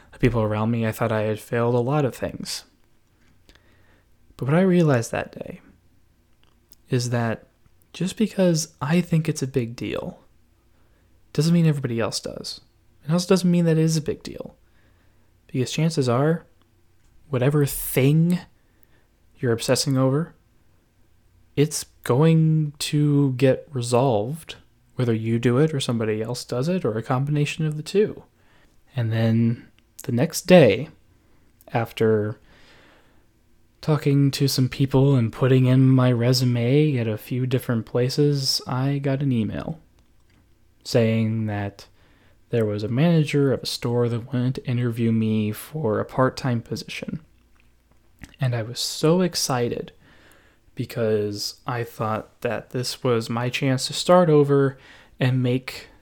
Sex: male